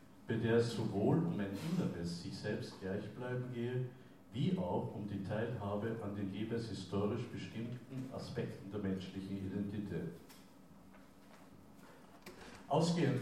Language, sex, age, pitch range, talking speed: German, male, 60-79, 100-130 Hz, 120 wpm